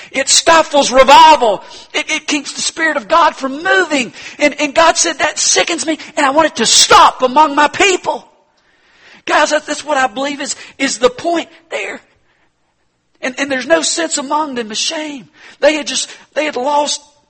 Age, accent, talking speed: 50-69, American, 180 wpm